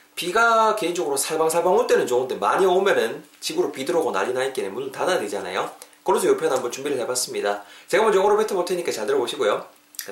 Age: 30-49